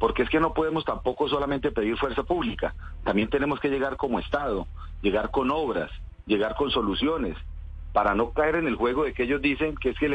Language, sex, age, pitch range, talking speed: Spanish, male, 40-59, 90-150 Hz, 215 wpm